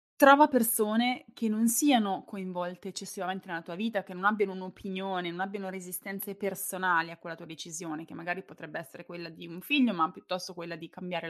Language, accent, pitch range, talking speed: Italian, native, 180-215 Hz, 185 wpm